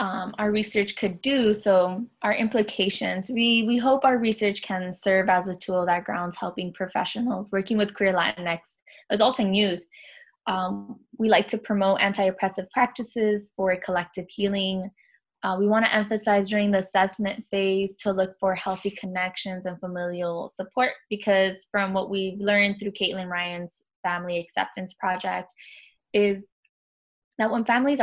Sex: female